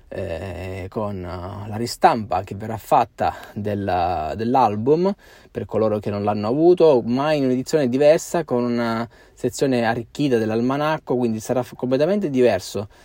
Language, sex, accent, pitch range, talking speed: Italian, male, native, 105-125 Hz, 130 wpm